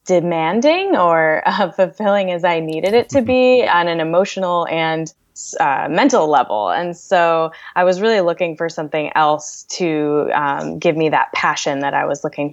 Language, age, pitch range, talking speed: English, 10-29, 150-185 Hz, 170 wpm